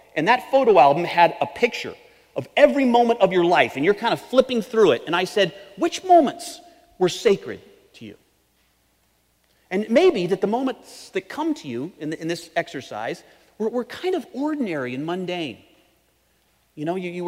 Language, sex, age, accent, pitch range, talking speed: English, male, 40-59, American, 150-210 Hz, 175 wpm